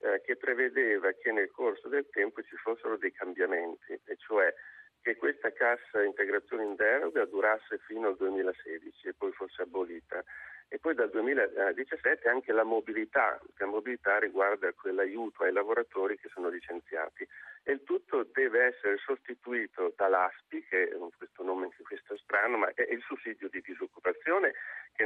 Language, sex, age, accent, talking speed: Italian, male, 50-69, native, 155 wpm